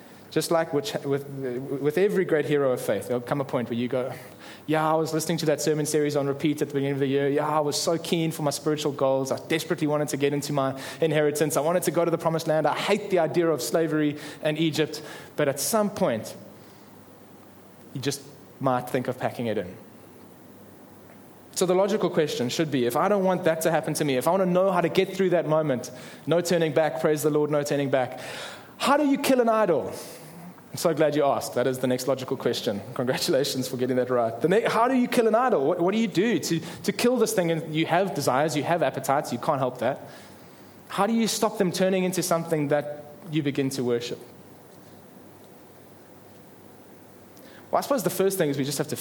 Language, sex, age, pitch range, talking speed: English, male, 20-39, 140-170 Hz, 225 wpm